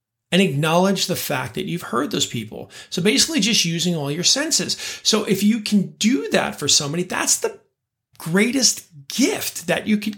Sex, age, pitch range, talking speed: male, 30-49, 140-185 Hz, 185 wpm